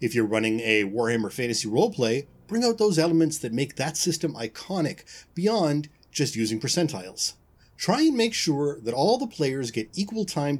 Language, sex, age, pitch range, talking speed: English, male, 30-49, 120-195 Hz, 175 wpm